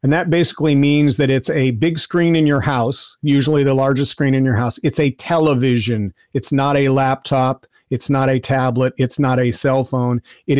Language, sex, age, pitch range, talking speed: English, male, 40-59, 130-150 Hz, 205 wpm